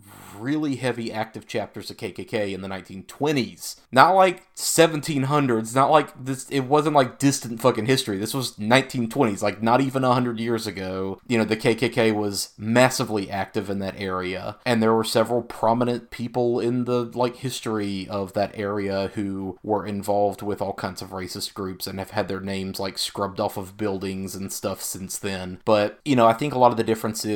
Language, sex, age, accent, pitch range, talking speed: English, male, 30-49, American, 100-120 Hz, 190 wpm